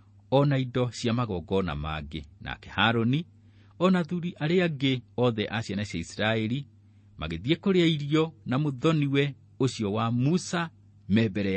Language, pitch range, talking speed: English, 100-145 Hz, 110 wpm